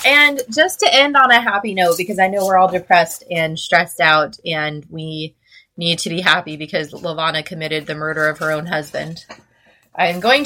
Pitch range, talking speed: 165-220 Hz, 195 wpm